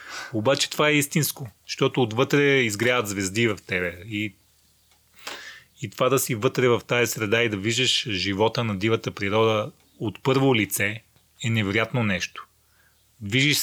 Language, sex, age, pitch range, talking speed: Bulgarian, male, 30-49, 110-145 Hz, 145 wpm